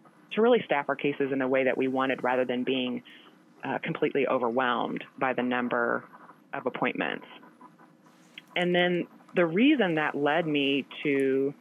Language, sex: English, female